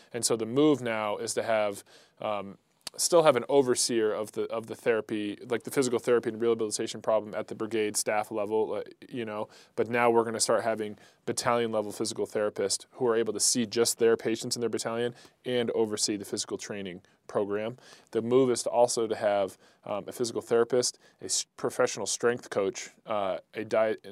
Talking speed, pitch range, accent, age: 195 wpm, 110-130 Hz, American, 20-39